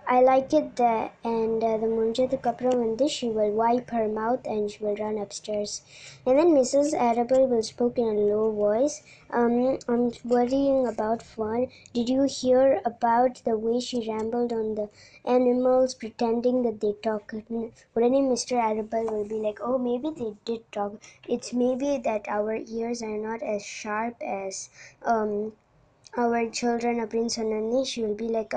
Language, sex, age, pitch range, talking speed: Tamil, male, 20-39, 215-245 Hz, 170 wpm